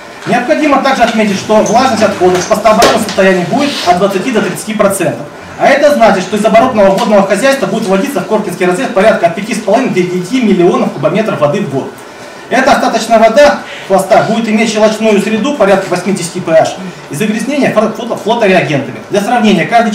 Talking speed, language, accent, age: 155 wpm, Russian, native, 30-49